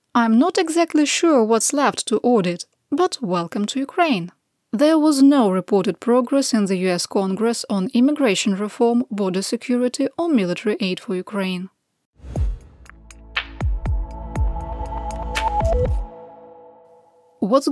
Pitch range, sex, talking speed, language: 195-280 Hz, female, 110 wpm, English